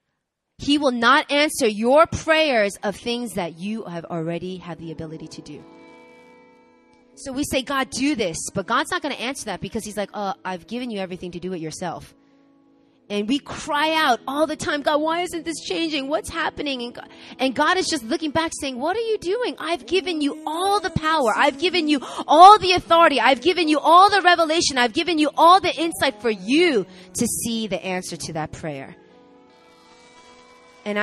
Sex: female